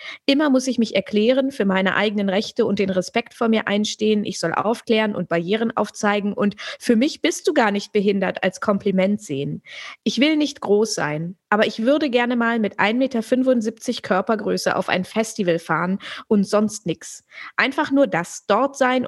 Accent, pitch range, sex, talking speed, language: German, 190-230 Hz, female, 180 wpm, German